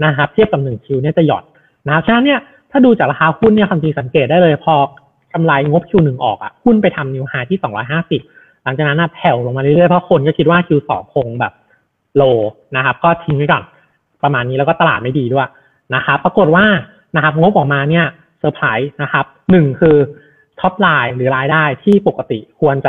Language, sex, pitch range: Thai, male, 135-180 Hz